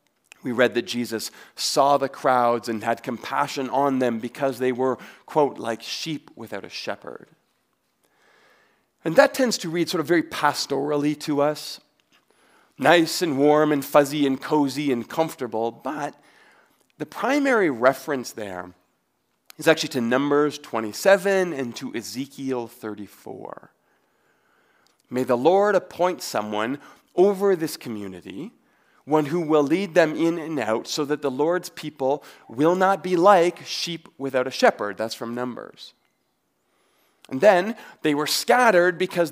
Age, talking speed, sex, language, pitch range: 40-59, 140 wpm, male, English, 130-175 Hz